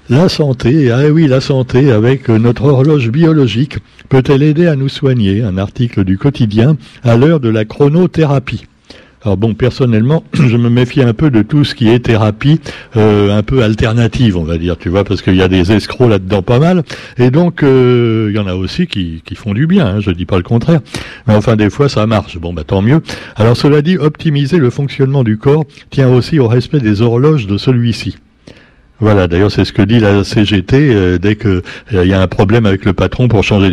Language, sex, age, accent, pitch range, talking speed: French, male, 60-79, French, 105-140 Hz, 220 wpm